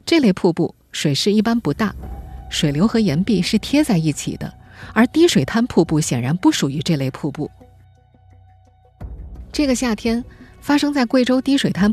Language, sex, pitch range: Chinese, female, 160-225 Hz